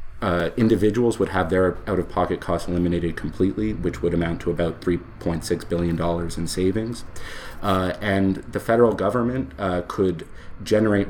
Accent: American